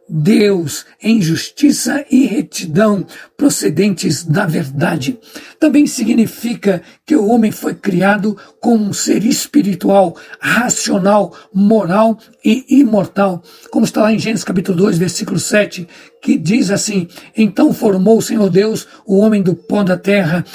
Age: 60-79